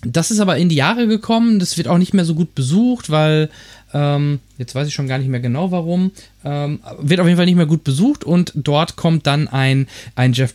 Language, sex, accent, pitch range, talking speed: German, male, German, 135-175 Hz, 240 wpm